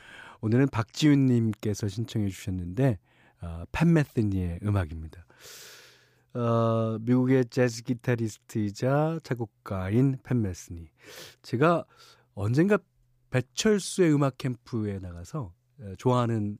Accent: native